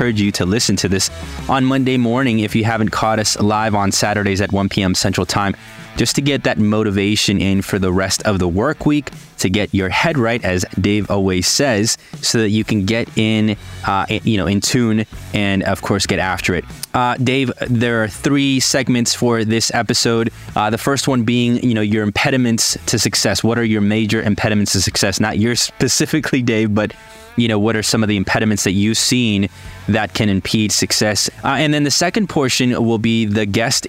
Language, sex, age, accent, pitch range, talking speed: English, male, 20-39, American, 100-115 Hz, 205 wpm